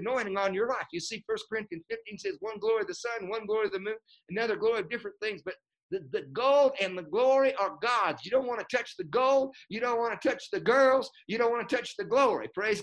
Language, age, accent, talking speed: English, 50-69, American, 260 wpm